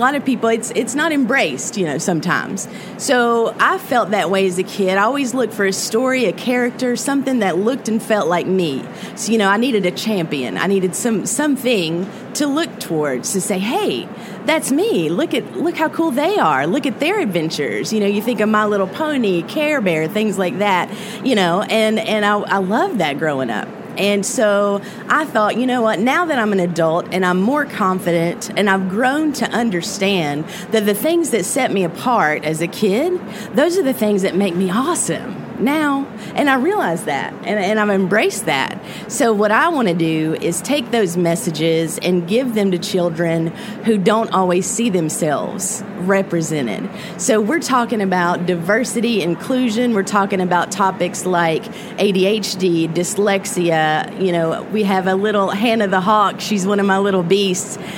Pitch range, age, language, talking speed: 185-235 Hz, 30-49, English, 190 wpm